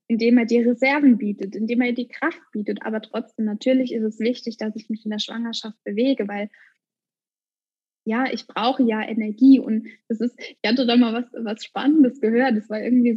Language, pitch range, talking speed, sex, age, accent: German, 225-260 Hz, 195 wpm, female, 10-29, German